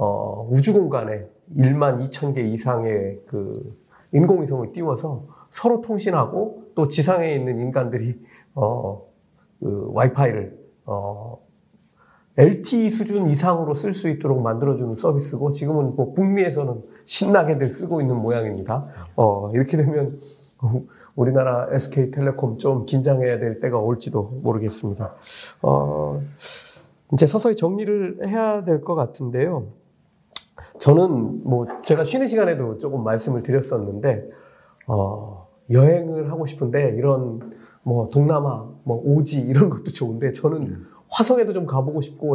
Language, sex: Korean, male